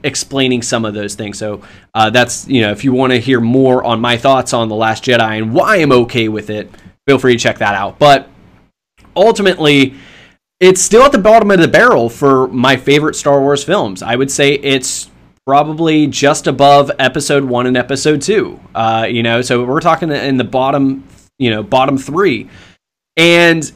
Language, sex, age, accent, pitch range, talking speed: English, male, 20-39, American, 115-155 Hz, 195 wpm